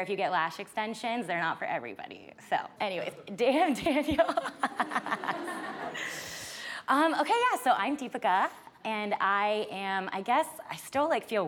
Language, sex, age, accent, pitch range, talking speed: English, female, 20-39, American, 160-225 Hz, 145 wpm